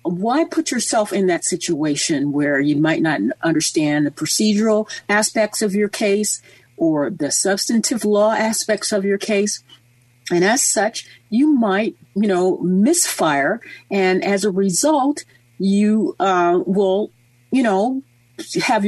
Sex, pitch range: female, 160-225 Hz